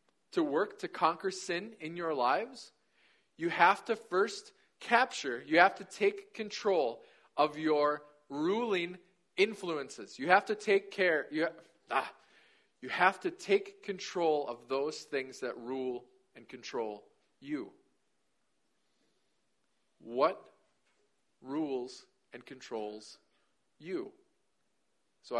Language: English